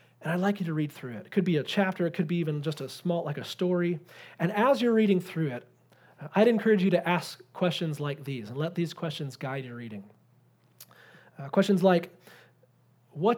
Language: English